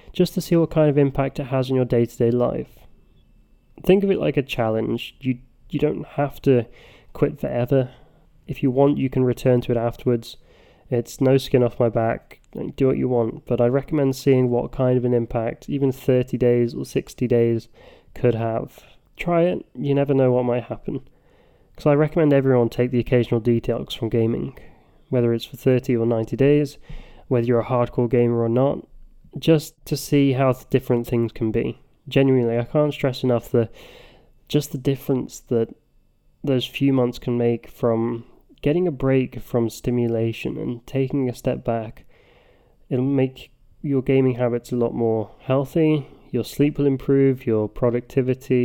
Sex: male